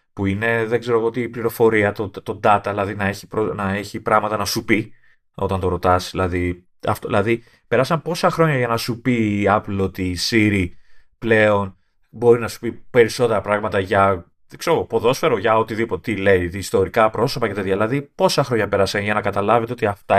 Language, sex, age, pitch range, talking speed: Greek, male, 30-49, 95-120 Hz, 190 wpm